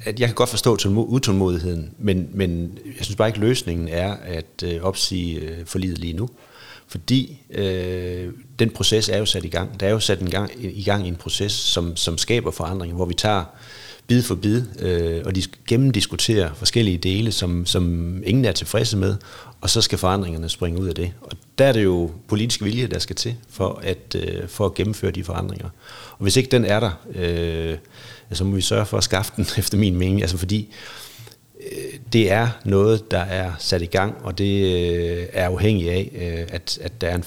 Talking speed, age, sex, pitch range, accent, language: 205 wpm, 30-49, male, 90-110 Hz, native, Danish